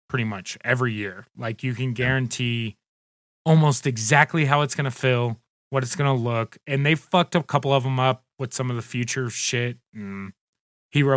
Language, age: English, 20-39